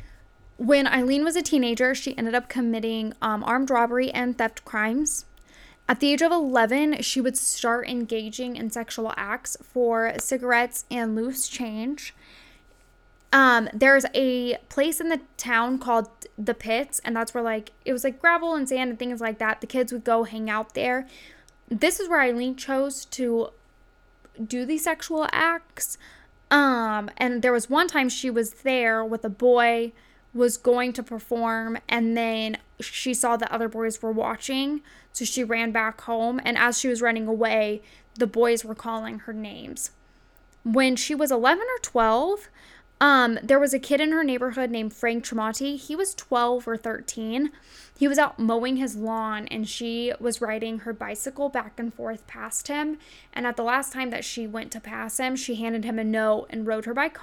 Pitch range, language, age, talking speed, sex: 230-270 Hz, English, 10-29, 180 wpm, female